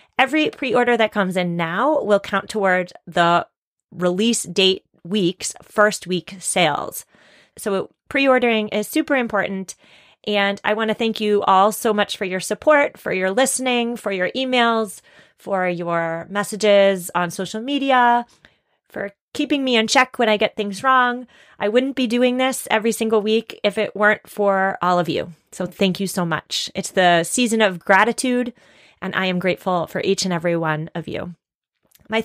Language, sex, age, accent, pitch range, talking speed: English, female, 30-49, American, 190-245 Hz, 170 wpm